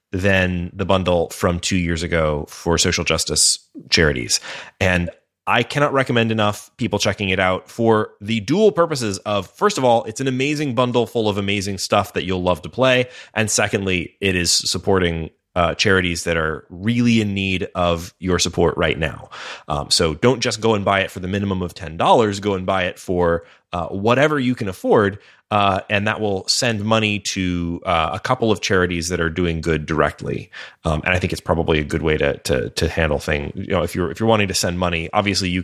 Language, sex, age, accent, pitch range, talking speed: English, male, 30-49, American, 85-110 Hz, 210 wpm